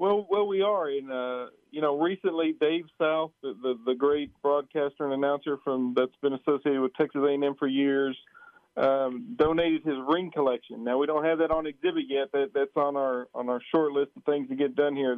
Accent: American